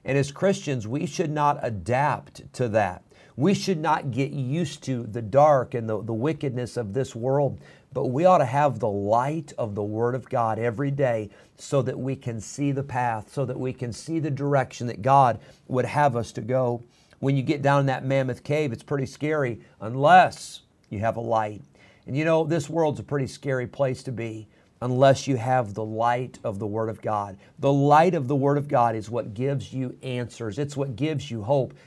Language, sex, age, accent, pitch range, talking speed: English, male, 50-69, American, 120-145 Hz, 215 wpm